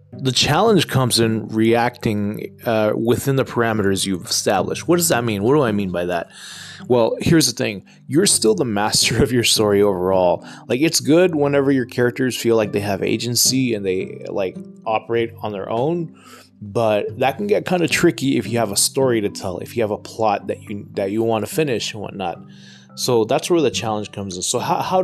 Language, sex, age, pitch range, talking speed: English, male, 20-39, 105-135 Hz, 215 wpm